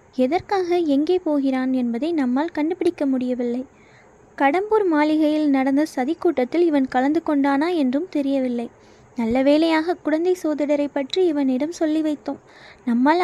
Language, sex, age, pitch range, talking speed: Tamil, female, 20-39, 270-335 Hz, 115 wpm